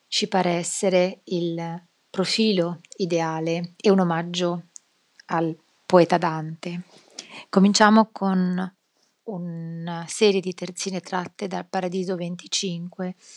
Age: 30-49